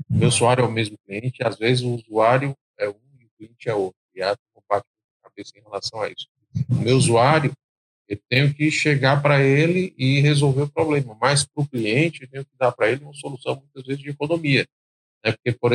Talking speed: 215 wpm